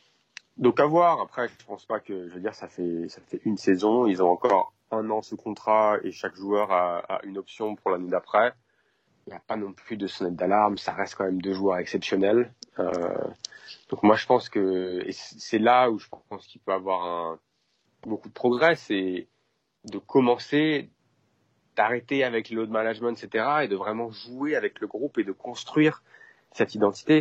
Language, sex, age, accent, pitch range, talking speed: French, male, 30-49, French, 95-120 Hz, 200 wpm